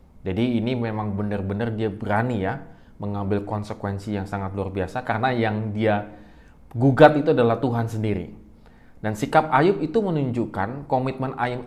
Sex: male